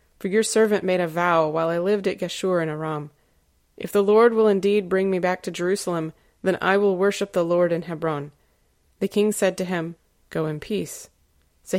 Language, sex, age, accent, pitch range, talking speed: English, female, 20-39, American, 170-200 Hz, 205 wpm